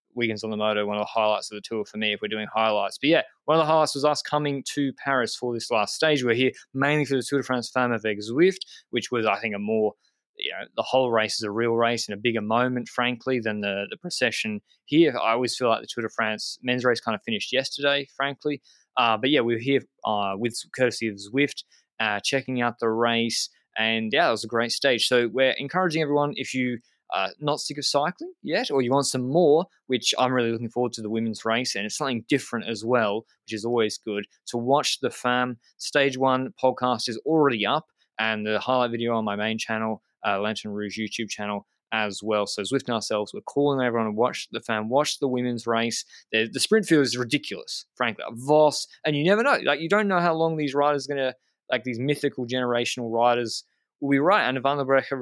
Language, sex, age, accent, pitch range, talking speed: English, male, 20-39, Australian, 110-140 Hz, 235 wpm